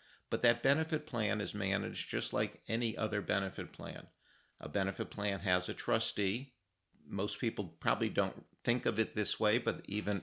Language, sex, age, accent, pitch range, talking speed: English, male, 50-69, American, 90-115 Hz, 170 wpm